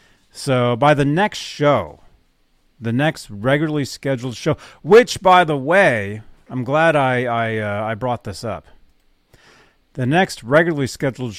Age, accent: 40-59, American